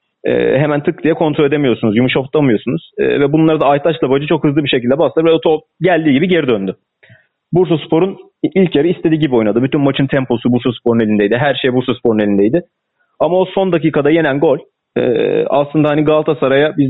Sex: male